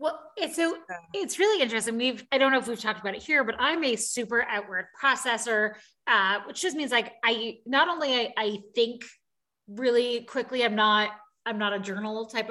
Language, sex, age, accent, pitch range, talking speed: English, female, 20-39, American, 210-255 Hz, 195 wpm